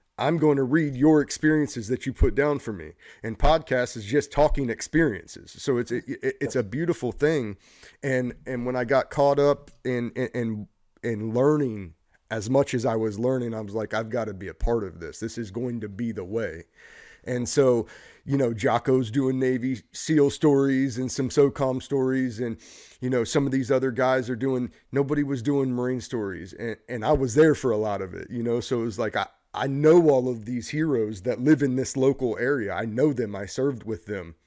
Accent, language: American, English